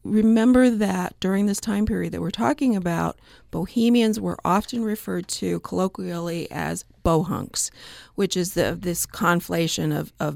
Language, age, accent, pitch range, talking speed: English, 40-59, American, 175-220 Hz, 145 wpm